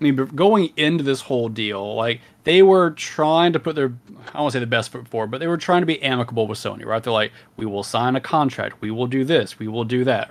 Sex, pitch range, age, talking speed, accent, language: male, 115-150 Hz, 30-49, 255 wpm, American, English